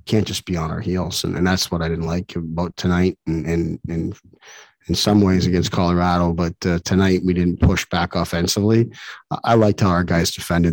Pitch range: 85-95 Hz